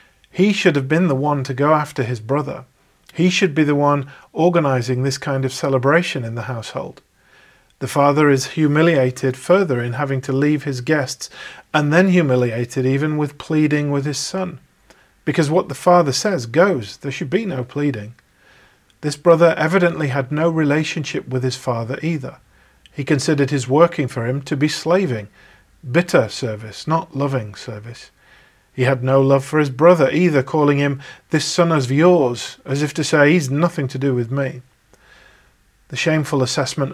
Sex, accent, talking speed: male, British, 175 wpm